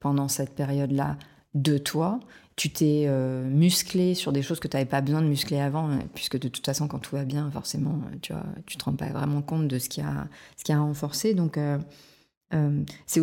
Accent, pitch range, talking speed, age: French, 140-170 Hz, 225 wpm, 30-49